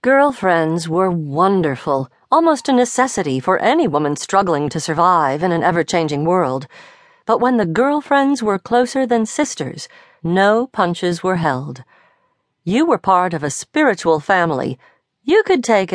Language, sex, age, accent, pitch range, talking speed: English, female, 50-69, American, 170-260 Hz, 145 wpm